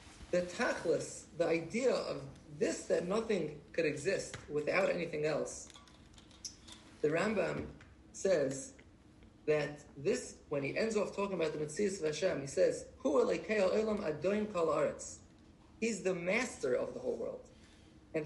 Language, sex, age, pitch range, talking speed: English, male, 30-49, 165-220 Hz, 130 wpm